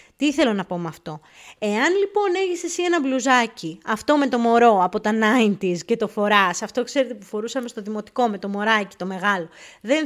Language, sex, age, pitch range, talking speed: Greek, female, 20-39, 210-280 Hz, 205 wpm